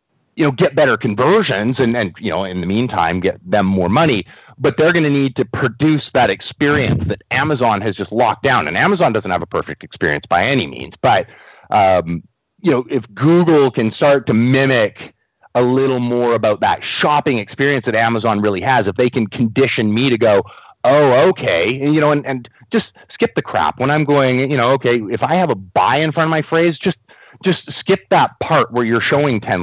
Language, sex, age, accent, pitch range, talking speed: English, male, 30-49, American, 110-150 Hz, 215 wpm